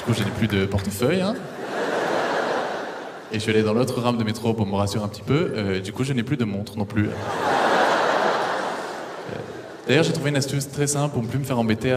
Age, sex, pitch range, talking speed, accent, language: 20-39, male, 105-130 Hz, 235 wpm, French, French